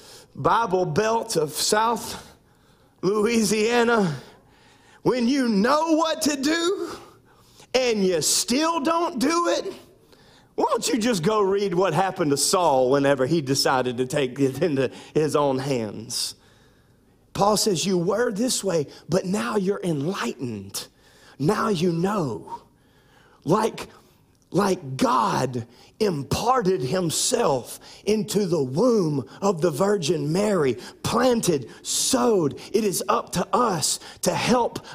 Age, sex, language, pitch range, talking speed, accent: 40-59, male, English, 140-230 Hz, 120 wpm, American